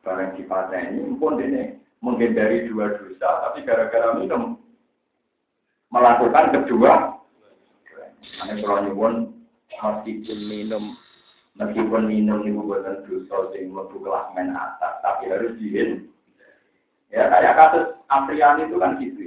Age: 50-69